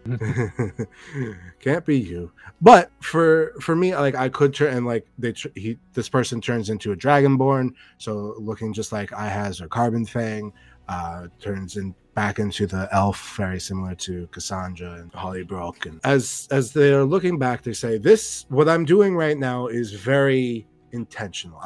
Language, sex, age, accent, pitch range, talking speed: English, male, 20-39, American, 105-135 Hz, 170 wpm